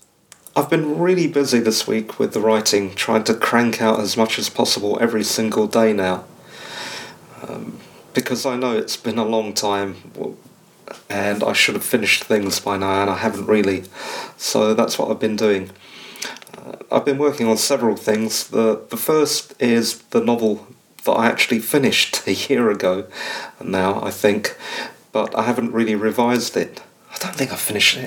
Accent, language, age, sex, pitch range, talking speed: British, English, 40-59, male, 105-120 Hz, 175 wpm